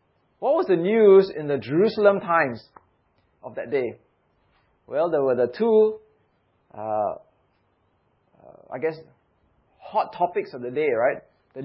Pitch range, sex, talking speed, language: 145-215 Hz, male, 140 wpm, English